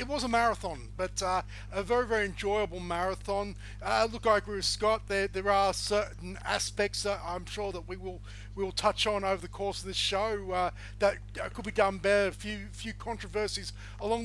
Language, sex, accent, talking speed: English, male, Australian, 205 wpm